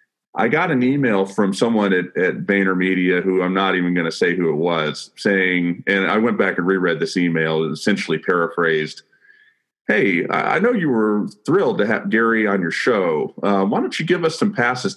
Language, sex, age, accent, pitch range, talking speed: English, male, 40-59, American, 90-135 Hz, 205 wpm